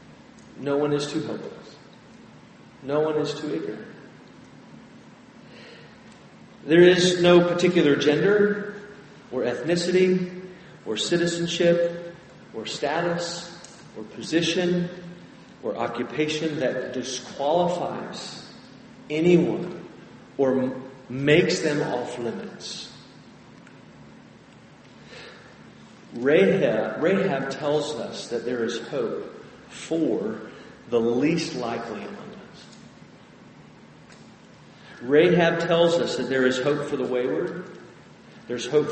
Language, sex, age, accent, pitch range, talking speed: English, male, 40-59, American, 135-170 Hz, 90 wpm